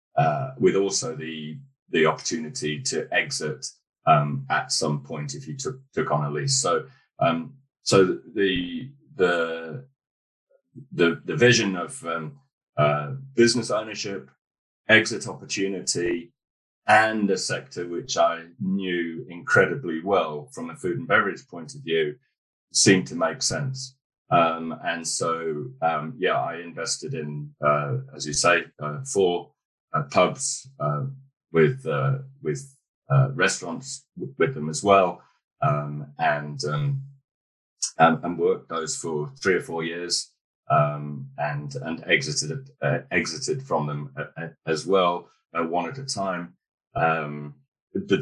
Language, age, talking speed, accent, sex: English, 30-49, 135 wpm, British, male